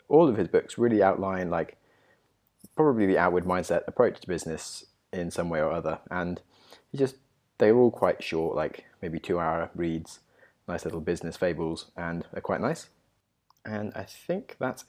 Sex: male